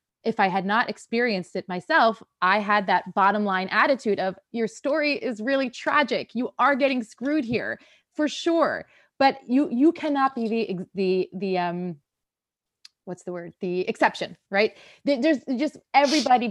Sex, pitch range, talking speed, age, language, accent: female, 180-230 Hz, 160 wpm, 20-39, English, American